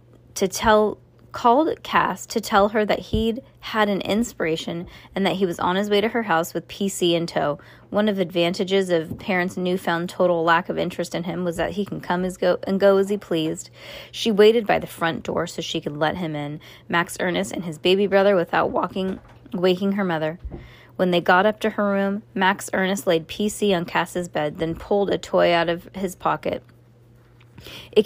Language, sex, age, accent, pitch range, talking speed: English, female, 20-39, American, 160-200 Hz, 205 wpm